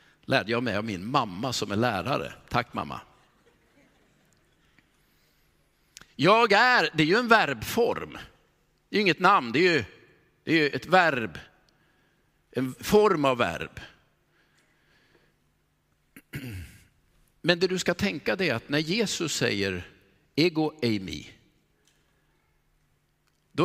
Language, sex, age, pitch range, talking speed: Swedish, male, 50-69, 140-205 Hz, 120 wpm